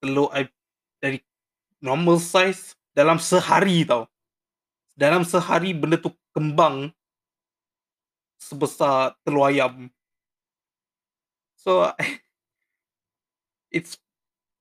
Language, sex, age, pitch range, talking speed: Malay, male, 20-39, 130-170 Hz, 75 wpm